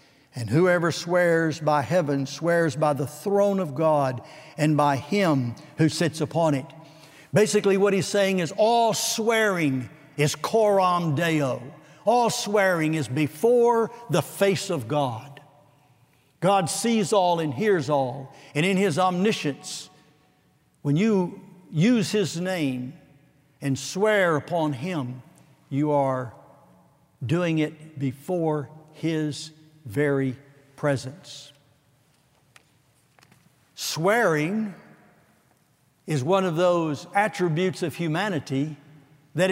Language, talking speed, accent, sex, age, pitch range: English, 110 wpm, American, male, 60-79, 145-195 Hz